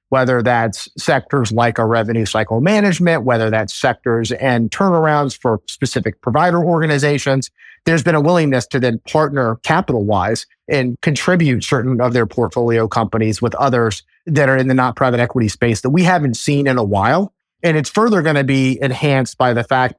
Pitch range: 120-140 Hz